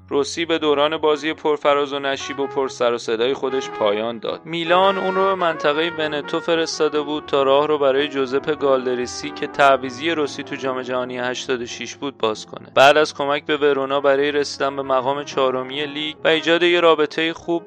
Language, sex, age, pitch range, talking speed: Persian, male, 30-49, 135-160 Hz, 185 wpm